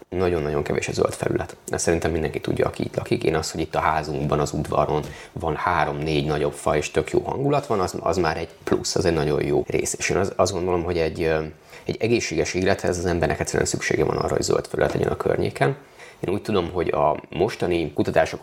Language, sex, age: Hungarian, male, 30-49